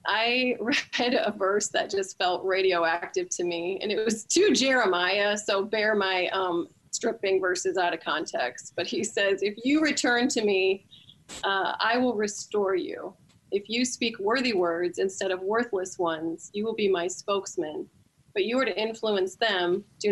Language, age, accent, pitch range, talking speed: English, 30-49, American, 190-255 Hz, 175 wpm